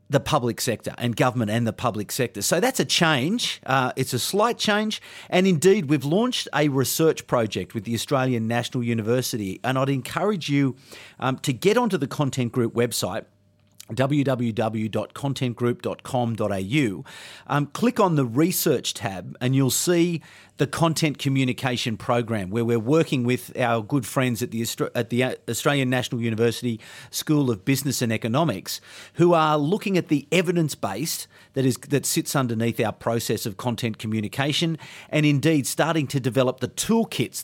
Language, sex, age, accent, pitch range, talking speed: English, male, 40-59, Australian, 120-160 Hz, 155 wpm